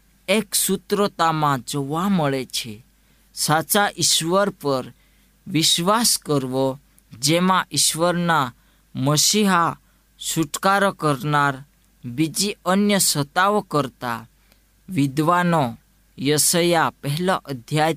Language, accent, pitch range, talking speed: Gujarati, native, 130-175 Hz, 70 wpm